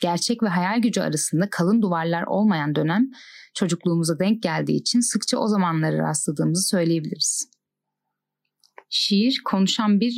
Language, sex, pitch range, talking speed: Turkish, female, 170-225 Hz, 125 wpm